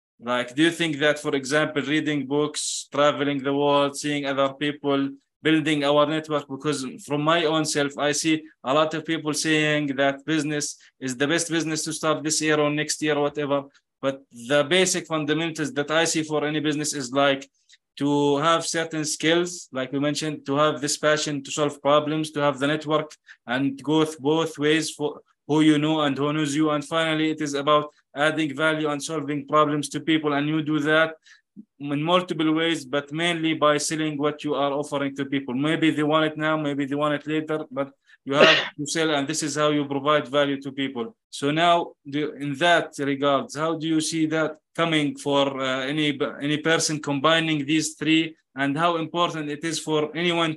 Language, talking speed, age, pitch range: English, 195 wpm, 20-39, 145-155 Hz